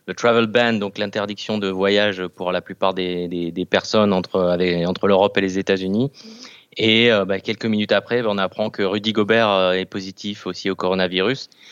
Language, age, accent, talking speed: French, 20-39, French, 190 wpm